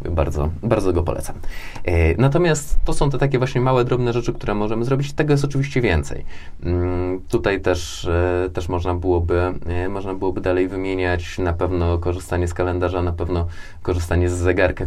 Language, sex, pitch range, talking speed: Polish, male, 85-95 Hz, 155 wpm